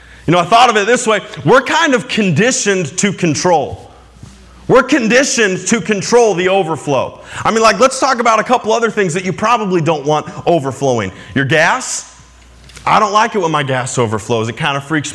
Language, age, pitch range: English, 20-39, 130-215 Hz